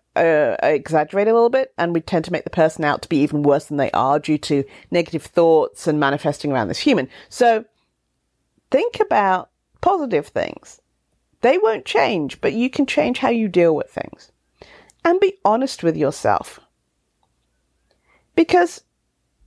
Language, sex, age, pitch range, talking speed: English, female, 40-59, 155-255 Hz, 160 wpm